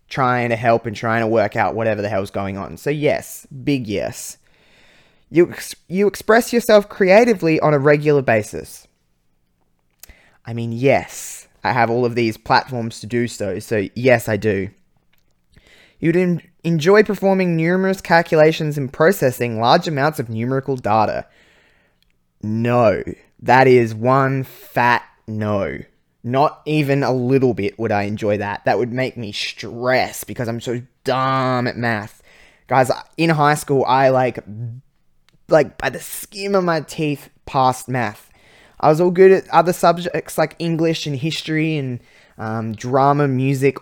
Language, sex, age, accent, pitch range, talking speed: English, male, 20-39, Australian, 115-155 Hz, 150 wpm